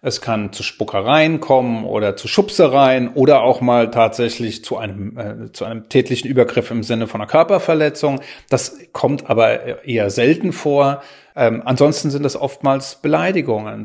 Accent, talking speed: German, 150 wpm